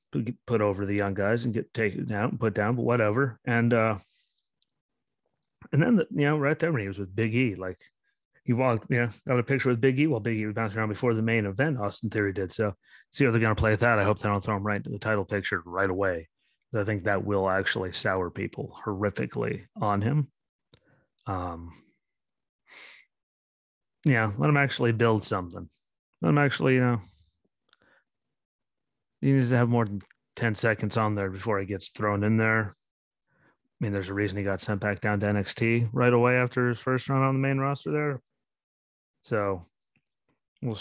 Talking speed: 205 wpm